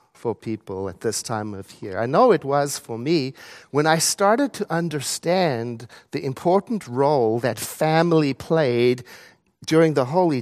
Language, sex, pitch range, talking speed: English, male, 120-170 Hz, 155 wpm